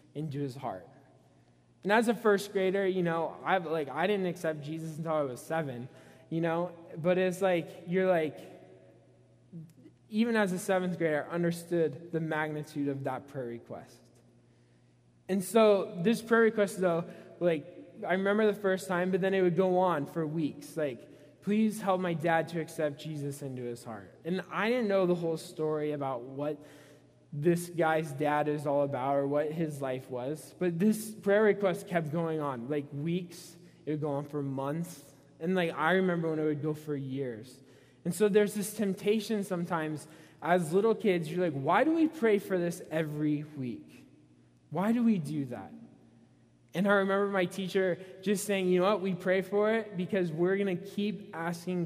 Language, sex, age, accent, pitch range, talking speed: English, male, 20-39, American, 145-185 Hz, 185 wpm